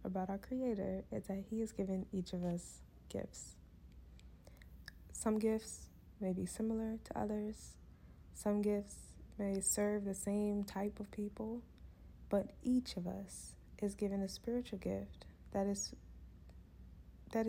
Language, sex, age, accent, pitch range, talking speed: English, female, 20-39, American, 185-210 Hz, 130 wpm